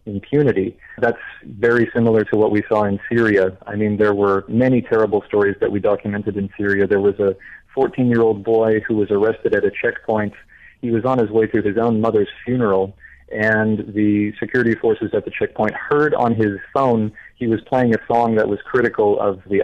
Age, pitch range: 30-49, 105-125 Hz